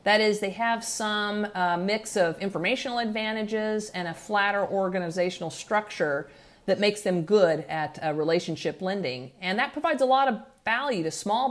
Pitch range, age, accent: 165-215 Hz, 50-69, American